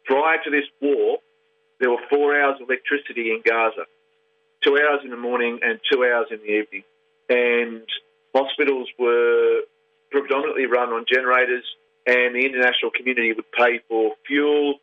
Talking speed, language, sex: 155 wpm, English, male